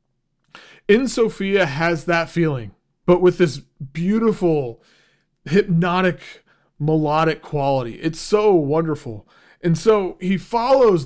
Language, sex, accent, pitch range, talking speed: English, male, American, 155-185 Hz, 105 wpm